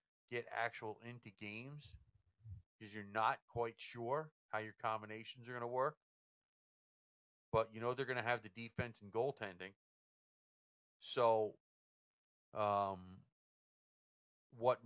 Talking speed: 120 wpm